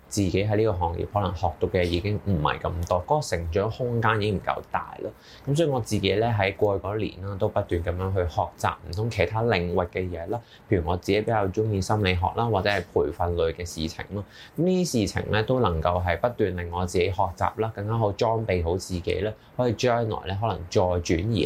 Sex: male